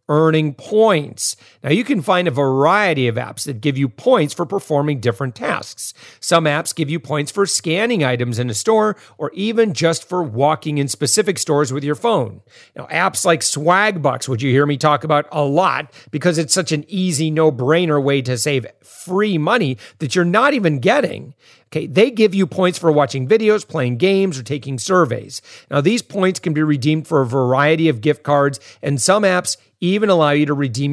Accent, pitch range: American, 140-180 Hz